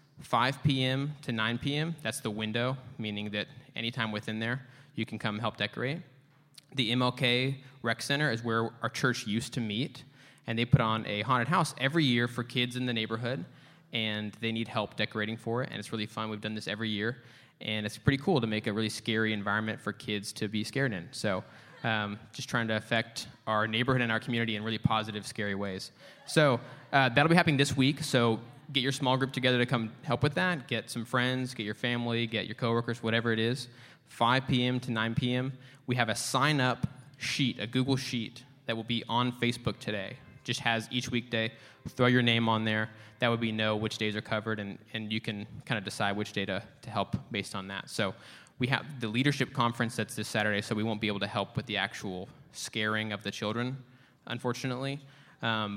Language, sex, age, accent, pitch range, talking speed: English, male, 20-39, American, 110-130 Hz, 210 wpm